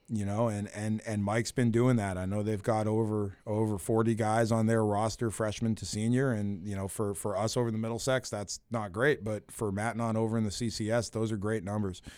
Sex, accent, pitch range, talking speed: male, American, 100-115 Hz, 240 wpm